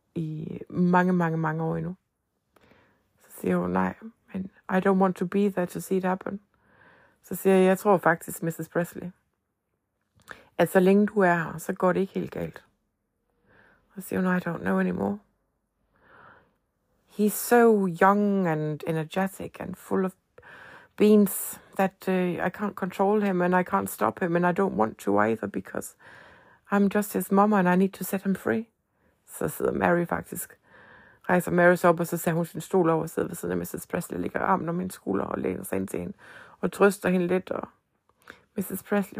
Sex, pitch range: female, 170-200 Hz